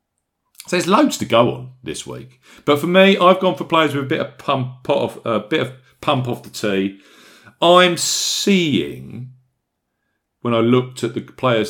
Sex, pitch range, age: male, 95-130 Hz, 50-69